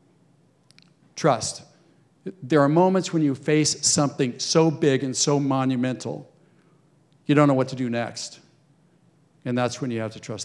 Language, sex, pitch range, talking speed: English, male, 125-160 Hz, 155 wpm